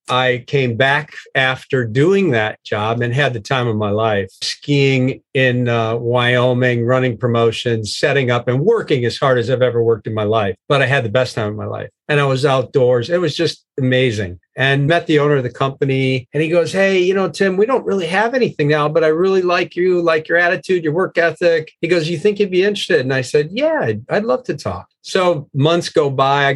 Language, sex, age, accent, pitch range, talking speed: English, male, 50-69, American, 125-160 Hz, 230 wpm